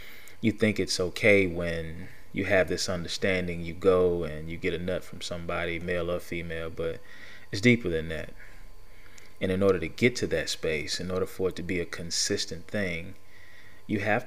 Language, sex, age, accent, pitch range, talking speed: English, male, 30-49, American, 90-95 Hz, 190 wpm